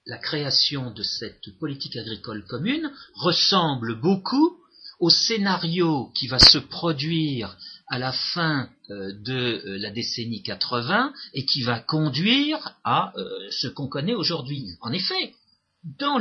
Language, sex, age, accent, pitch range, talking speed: French, male, 50-69, French, 120-185 Hz, 125 wpm